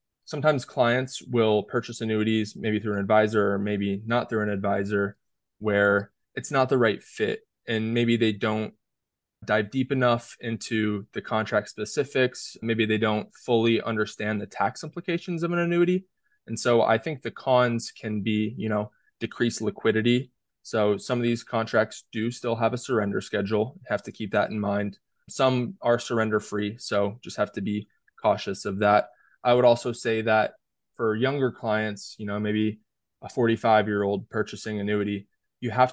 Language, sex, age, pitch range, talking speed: English, male, 20-39, 105-120 Hz, 170 wpm